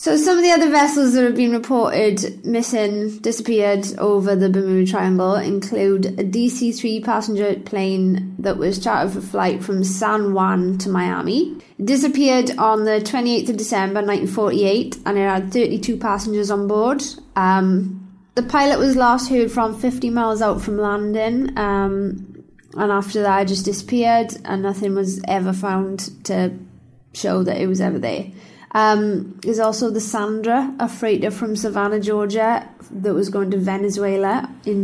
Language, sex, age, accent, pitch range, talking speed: English, female, 20-39, British, 195-235 Hz, 160 wpm